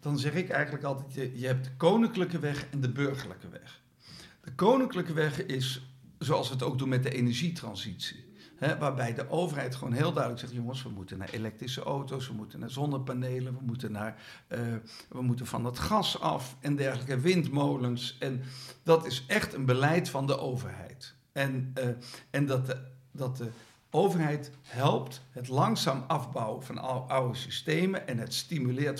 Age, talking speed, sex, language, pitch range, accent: 50-69, 175 wpm, male, Dutch, 125-155 Hz, Dutch